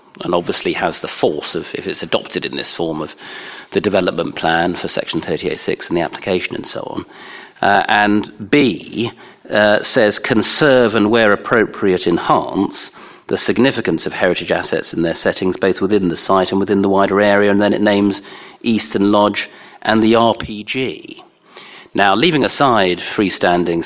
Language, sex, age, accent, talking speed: English, male, 40-59, British, 165 wpm